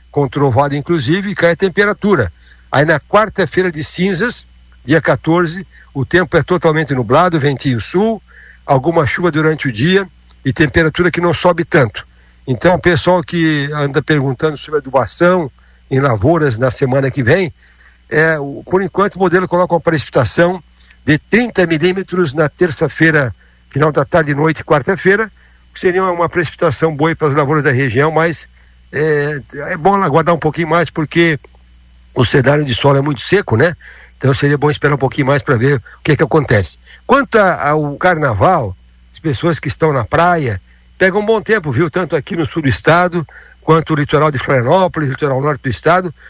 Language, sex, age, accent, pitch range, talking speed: Portuguese, male, 60-79, Brazilian, 135-175 Hz, 170 wpm